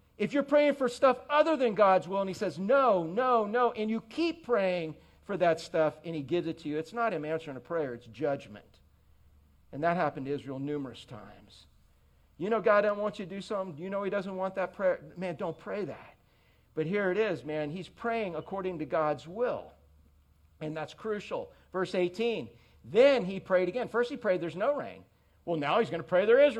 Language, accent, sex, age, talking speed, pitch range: English, American, male, 50-69, 220 wpm, 155-245 Hz